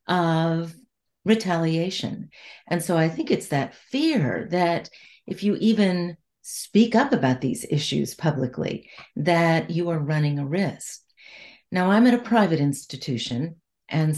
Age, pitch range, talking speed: 50-69, 155-195 Hz, 135 wpm